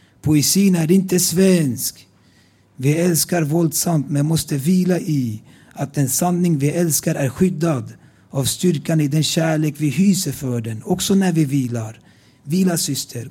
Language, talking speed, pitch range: Swedish, 150 wpm, 135-170 Hz